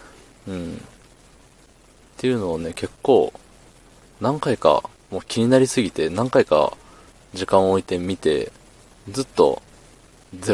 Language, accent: Japanese, native